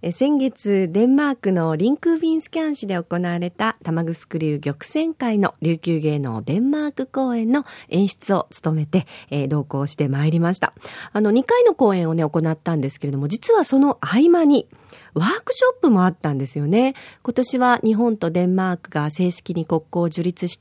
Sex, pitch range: female, 165-260 Hz